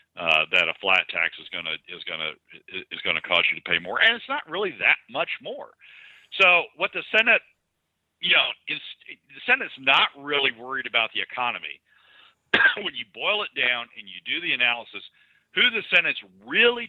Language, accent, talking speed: English, American, 195 wpm